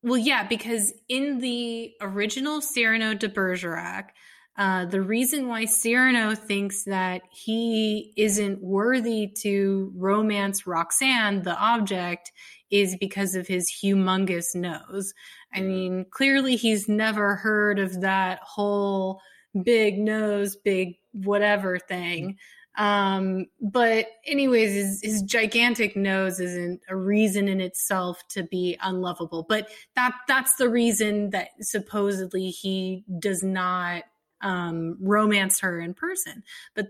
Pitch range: 185-220 Hz